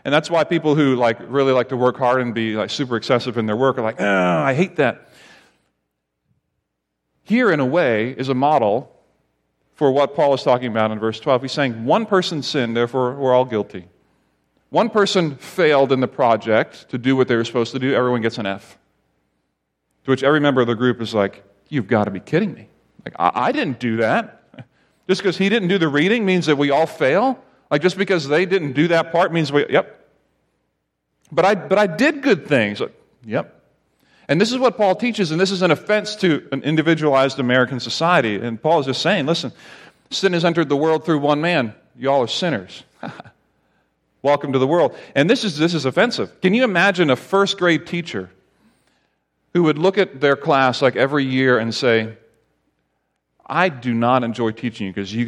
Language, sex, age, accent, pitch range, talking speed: English, male, 40-59, American, 110-165 Hz, 205 wpm